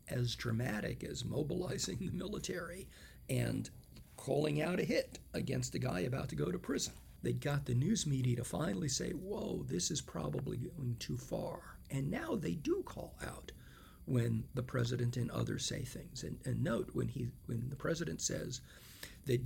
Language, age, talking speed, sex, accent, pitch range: English, 50-69, 175 wpm, male, American, 120-150 Hz